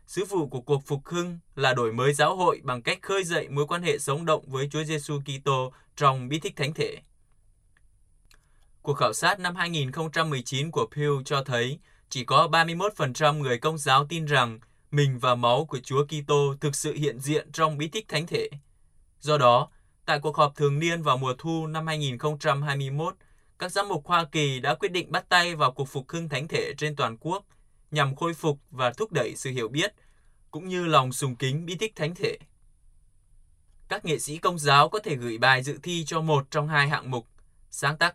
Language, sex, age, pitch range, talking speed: Vietnamese, male, 20-39, 130-160 Hz, 205 wpm